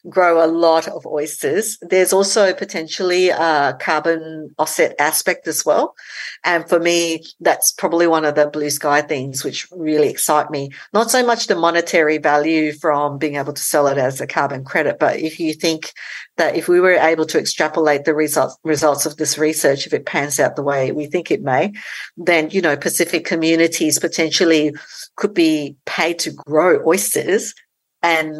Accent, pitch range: Australian, 150-175 Hz